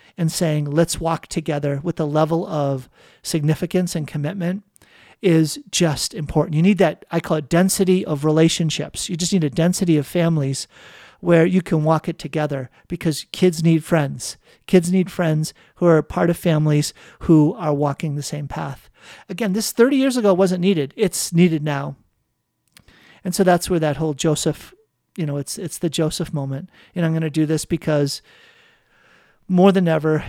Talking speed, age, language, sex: 175 wpm, 40-59, English, male